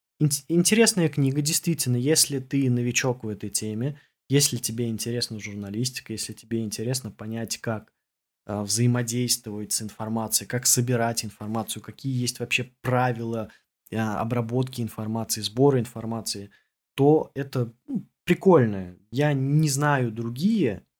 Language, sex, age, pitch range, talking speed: Russian, male, 20-39, 110-135 Hz, 115 wpm